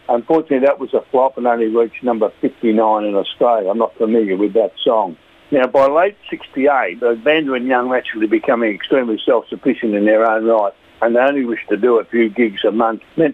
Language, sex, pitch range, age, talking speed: English, male, 110-130 Hz, 60-79, 210 wpm